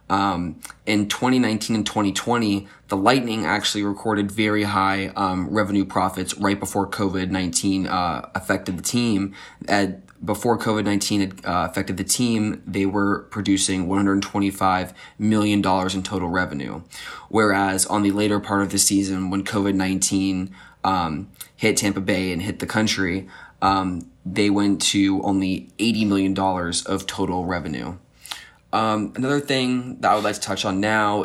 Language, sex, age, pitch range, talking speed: English, male, 20-39, 95-105 Hz, 145 wpm